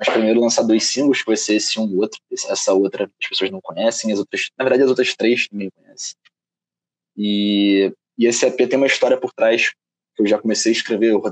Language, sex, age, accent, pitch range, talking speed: Portuguese, male, 20-39, Brazilian, 110-135 Hz, 225 wpm